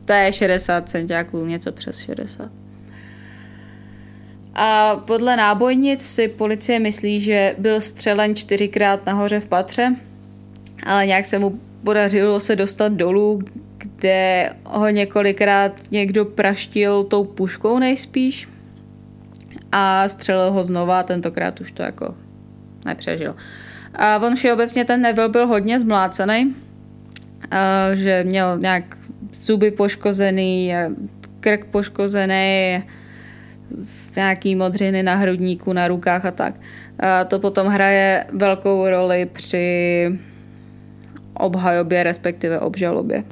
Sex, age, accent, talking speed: female, 20-39, native, 110 wpm